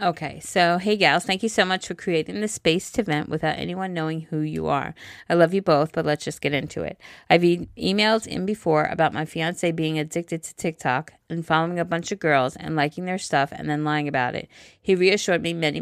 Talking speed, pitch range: 230 wpm, 150-180 Hz